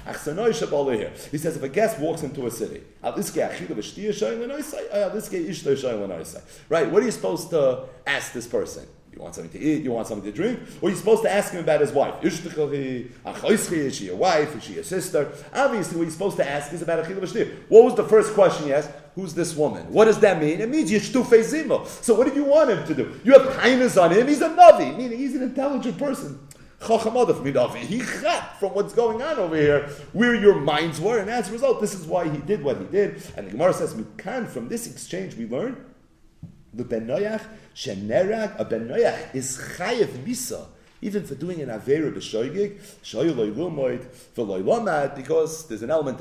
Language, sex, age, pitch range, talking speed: English, male, 40-59, 145-225 Hz, 175 wpm